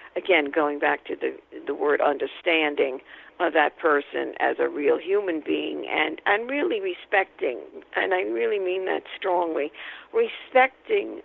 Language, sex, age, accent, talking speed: English, female, 50-69, American, 145 wpm